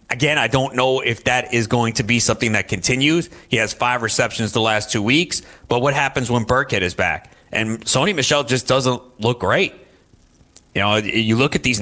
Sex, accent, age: male, American, 30-49